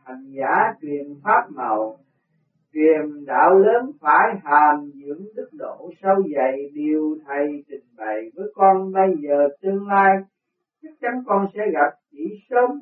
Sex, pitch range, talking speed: male, 150-205 Hz, 150 wpm